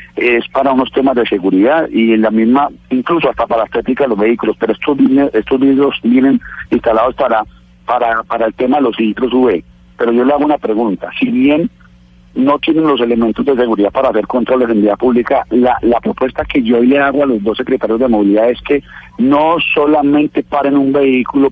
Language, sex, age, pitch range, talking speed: Spanish, male, 40-59, 115-145 Hz, 205 wpm